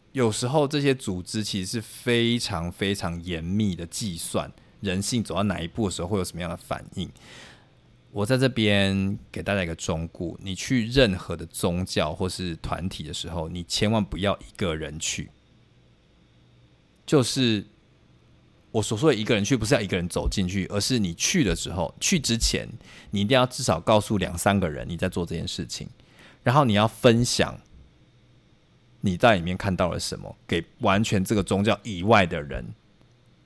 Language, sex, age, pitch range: Chinese, male, 20-39, 90-115 Hz